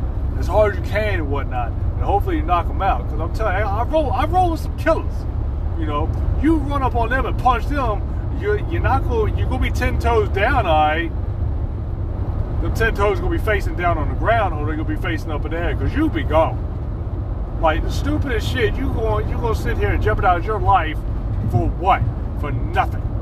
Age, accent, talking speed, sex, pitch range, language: 30-49, American, 230 wpm, male, 90-105 Hz, English